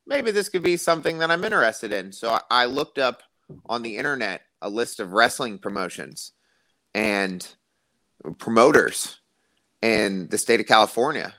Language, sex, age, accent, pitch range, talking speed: English, male, 30-49, American, 100-120 Hz, 150 wpm